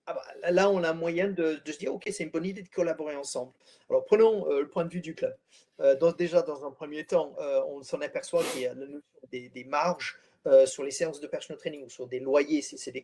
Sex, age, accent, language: male, 40-59, French, French